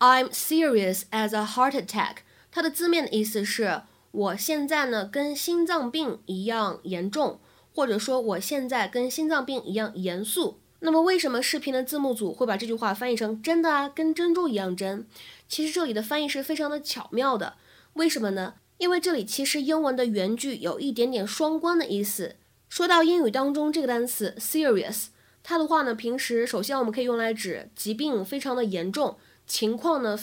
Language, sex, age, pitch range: Chinese, female, 20-39, 215-310 Hz